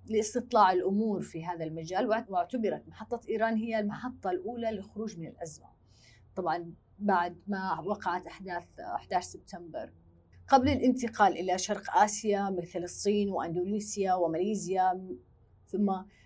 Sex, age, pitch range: female, 30-49, 175-220 Hz